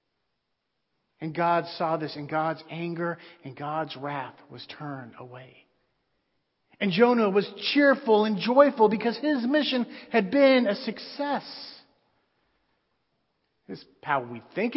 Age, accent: 40-59, American